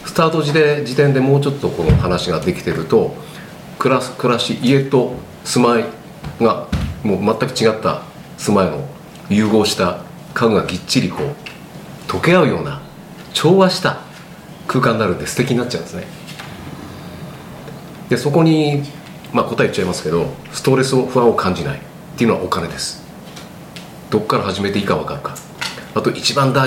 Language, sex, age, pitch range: Japanese, male, 40-59, 125-160 Hz